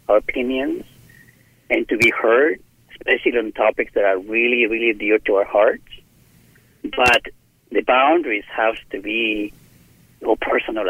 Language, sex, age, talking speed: English, male, 50-69, 130 wpm